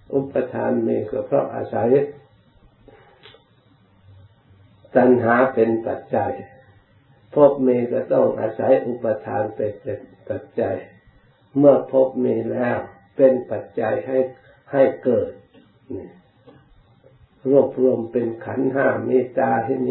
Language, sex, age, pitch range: Thai, male, 50-69, 105-135 Hz